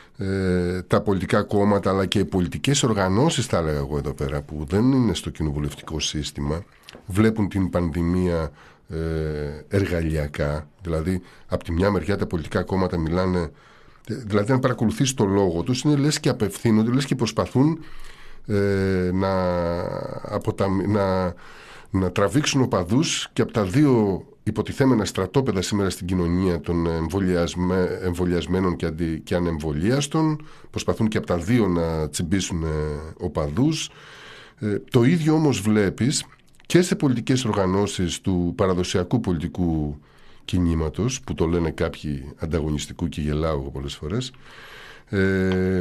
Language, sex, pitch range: Greek, male, 85-110 Hz